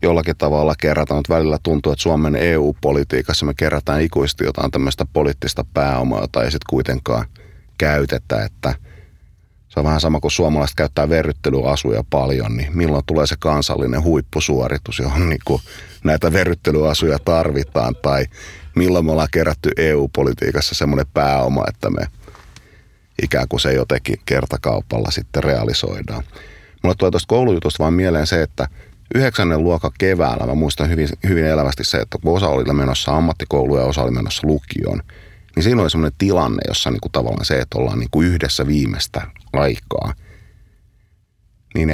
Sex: male